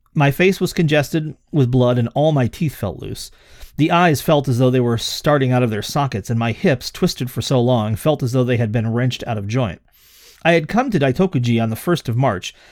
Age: 40-59